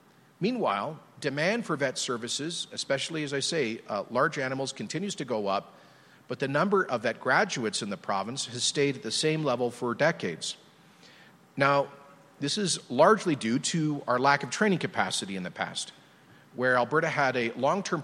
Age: 40-59